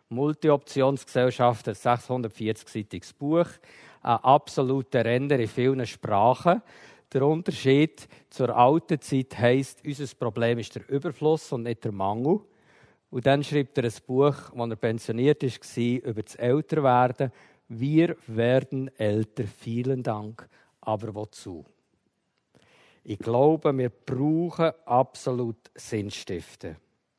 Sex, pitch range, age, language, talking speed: male, 120-150 Hz, 50-69, German, 115 wpm